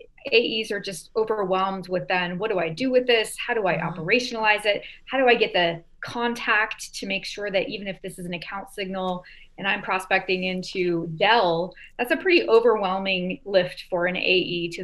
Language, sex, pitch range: English, female, 175-220 Hz